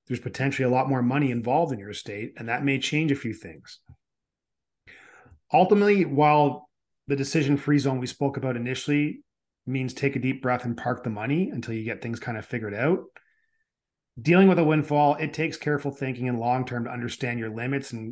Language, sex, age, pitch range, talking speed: English, male, 30-49, 120-145 Hz, 190 wpm